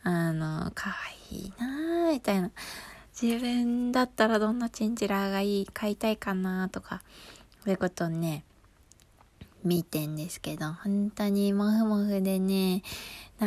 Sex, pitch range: female, 170-215 Hz